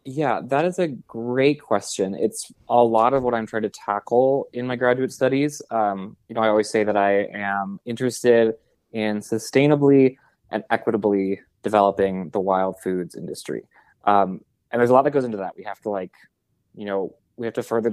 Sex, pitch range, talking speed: male, 105-130 Hz, 190 wpm